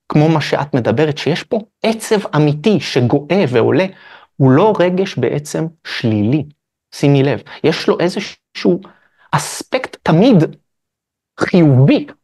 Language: Hebrew